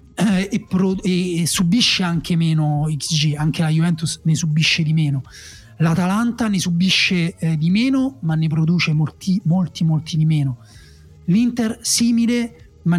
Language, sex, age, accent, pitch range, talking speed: Italian, male, 30-49, native, 155-190 Hz, 145 wpm